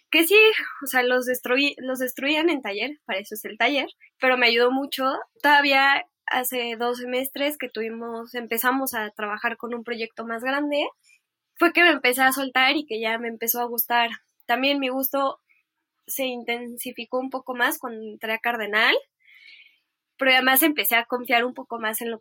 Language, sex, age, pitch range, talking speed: Spanish, female, 10-29, 230-280 Hz, 185 wpm